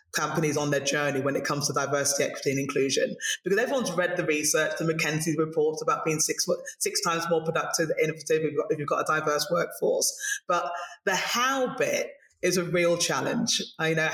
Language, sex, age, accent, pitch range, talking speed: English, female, 20-39, British, 150-180 Hz, 200 wpm